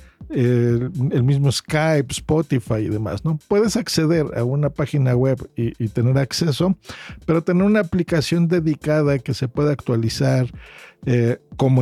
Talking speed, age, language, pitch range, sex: 145 wpm, 50-69, Spanish, 125-165 Hz, male